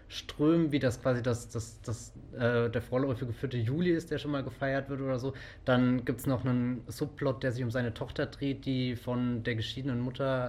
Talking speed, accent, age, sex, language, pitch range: 225 wpm, German, 20-39, male, German, 115-135 Hz